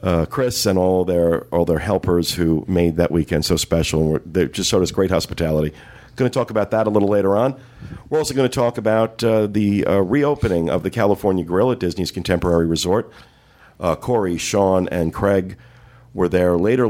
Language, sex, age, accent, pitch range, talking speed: English, male, 50-69, American, 85-110 Hz, 200 wpm